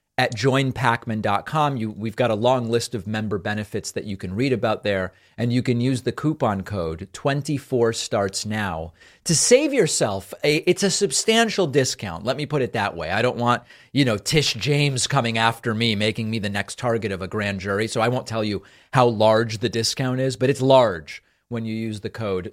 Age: 40-59